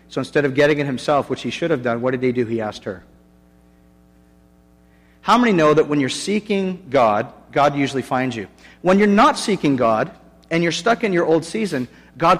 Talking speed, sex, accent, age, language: 210 wpm, male, American, 40-59, English